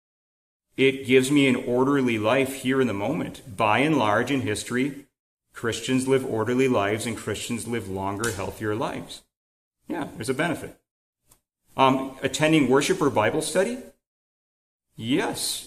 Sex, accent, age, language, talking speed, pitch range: male, American, 40-59, English, 140 wpm, 105-135 Hz